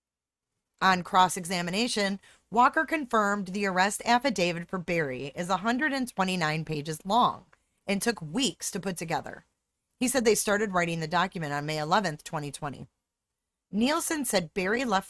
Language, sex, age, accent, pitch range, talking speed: English, female, 30-49, American, 165-245 Hz, 135 wpm